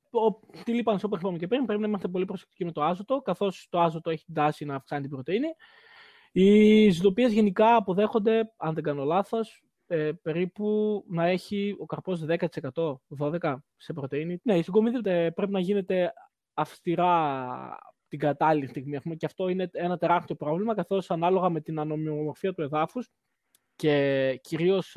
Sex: male